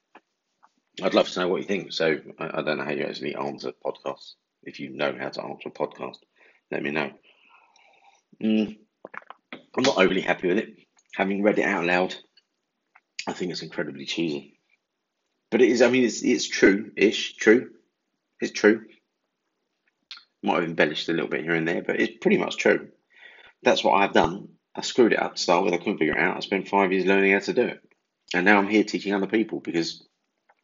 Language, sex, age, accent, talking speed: English, male, 30-49, British, 205 wpm